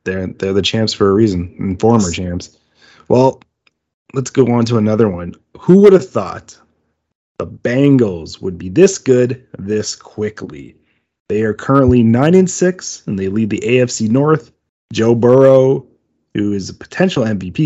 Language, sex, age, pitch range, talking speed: English, male, 30-49, 100-125 Hz, 160 wpm